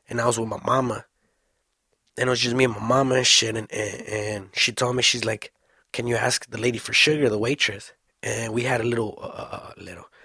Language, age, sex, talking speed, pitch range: English, 20-39, male, 240 wpm, 115-140 Hz